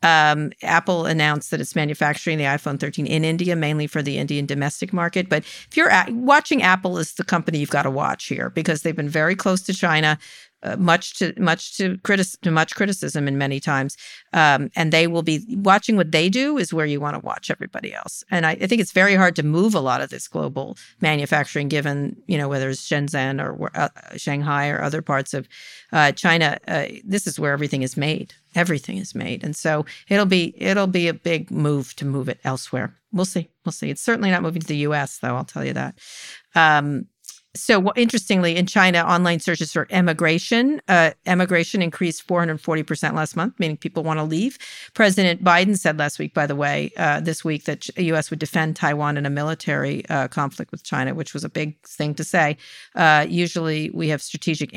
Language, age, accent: English, 50-69, American